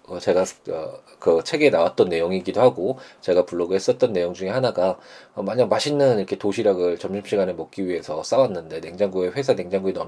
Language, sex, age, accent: Korean, male, 20-39, native